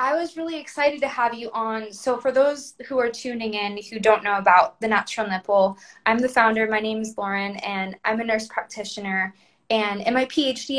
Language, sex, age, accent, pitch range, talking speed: English, female, 20-39, American, 205-255 Hz, 210 wpm